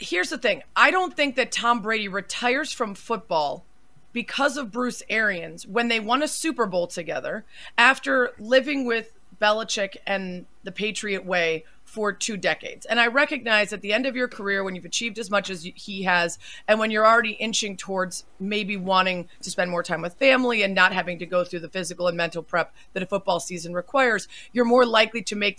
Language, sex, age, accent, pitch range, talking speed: English, female, 30-49, American, 180-235 Hz, 200 wpm